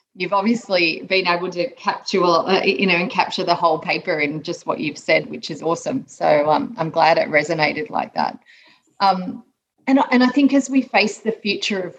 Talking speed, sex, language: 200 wpm, female, English